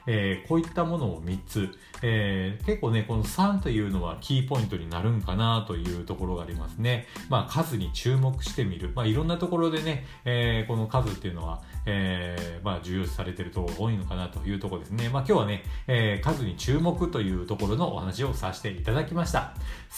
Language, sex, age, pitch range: Japanese, male, 40-59, 105-165 Hz